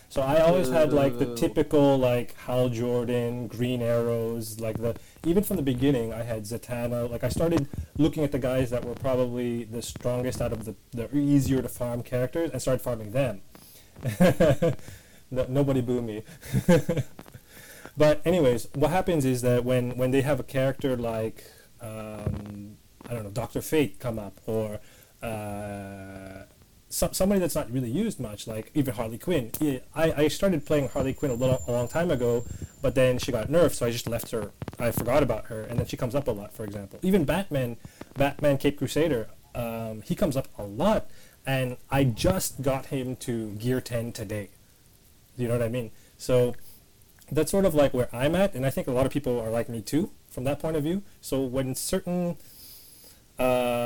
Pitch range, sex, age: 115-145 Hz, male, 30-49